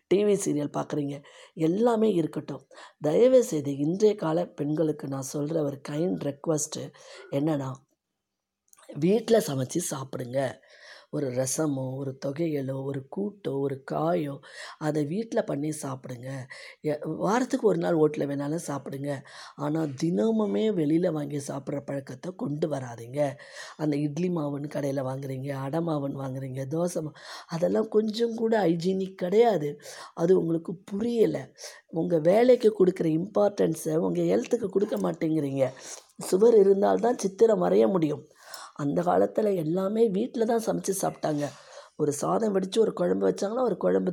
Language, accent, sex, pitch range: Tamil, native, female, 150-195 Hz